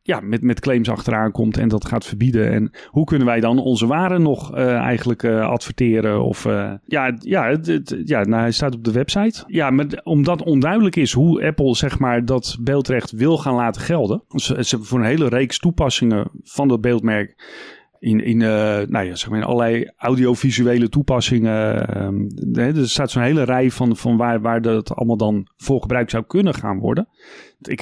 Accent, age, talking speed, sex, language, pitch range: Dutch, 30-49, 180 wpm, male, Dutch, 115-145 Hz